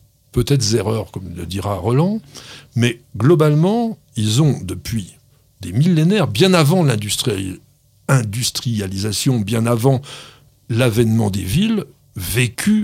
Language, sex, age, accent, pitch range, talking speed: French, male, 60-79, French, 105-145 Hz, 105 wpm